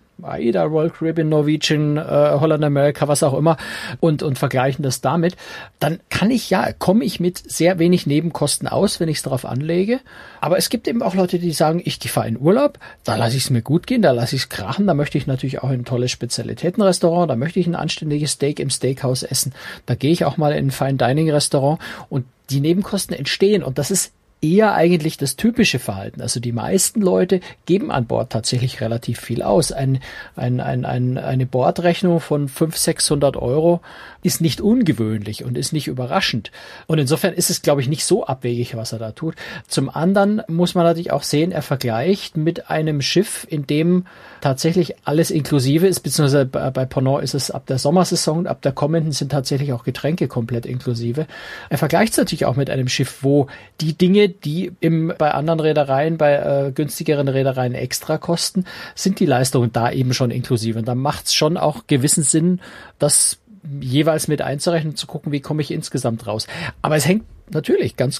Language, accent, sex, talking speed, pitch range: German, German, male, 195 wpm, 135-170 Hz